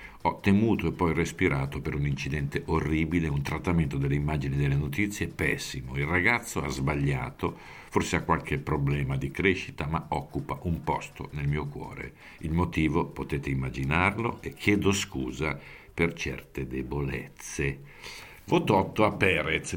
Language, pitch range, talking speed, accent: Italian, 75-100 Hz, 145 wpm, native